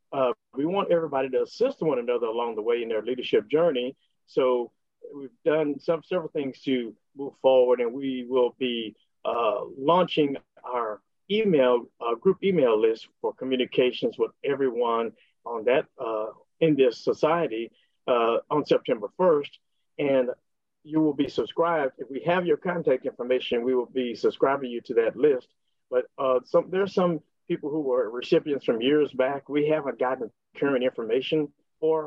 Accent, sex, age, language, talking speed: American, male, 50-69, English, 165 wpm